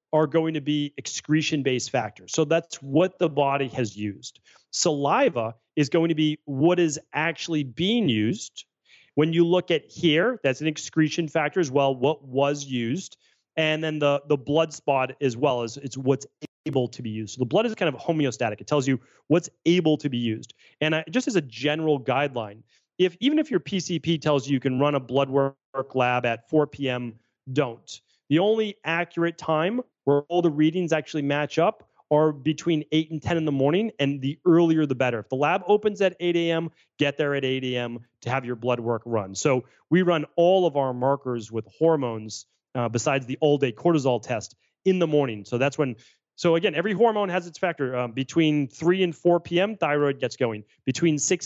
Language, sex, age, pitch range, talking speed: English, male, 30-49, 130-170 Hz, 205 wpm